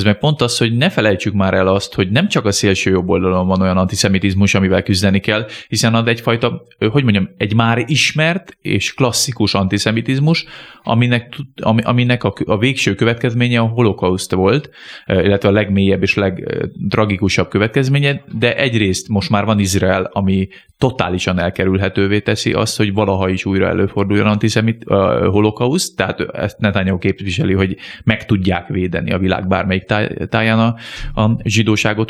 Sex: male